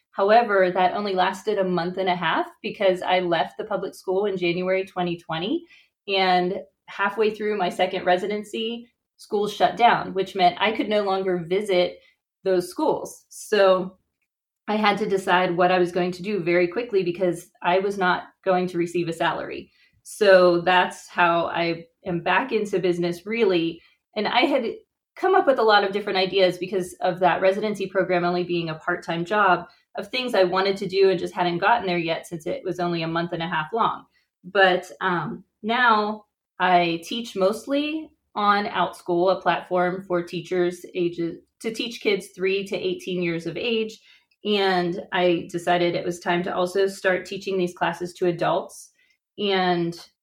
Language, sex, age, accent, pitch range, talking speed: English, female, 20-39, American, 175-205 Hz, 175 wpm